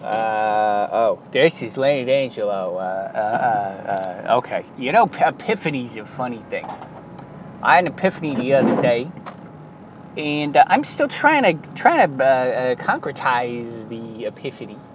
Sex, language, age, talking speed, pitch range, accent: male, English, 20-39, 150 wpm, 140-205 Hz, American